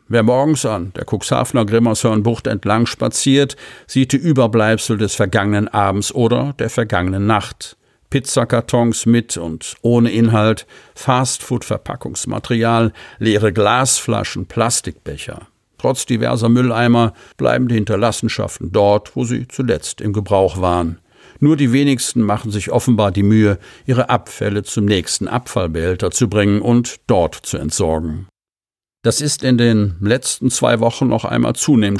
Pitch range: 100-125 Hz